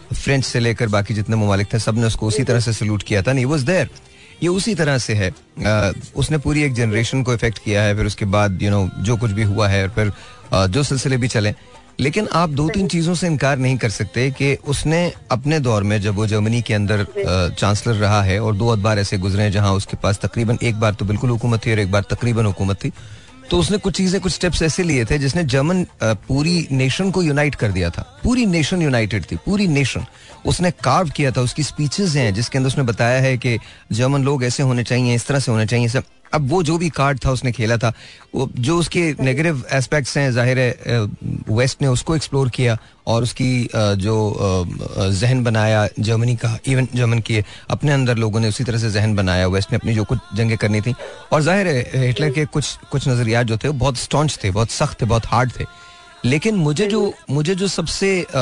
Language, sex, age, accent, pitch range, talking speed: Hindi, male, 30-49, native, 110-145 Hz, 215 wpm